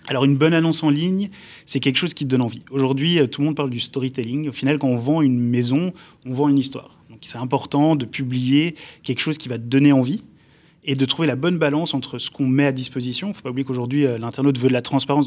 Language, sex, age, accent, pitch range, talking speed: French, male, 20-39, French, 130-150 Hz, 260 wpm